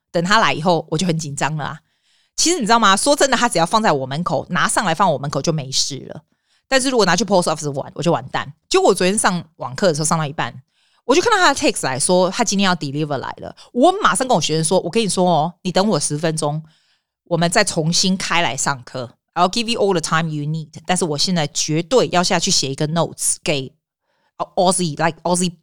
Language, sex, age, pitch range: Chinese, female, 30-49, 160-230 Hz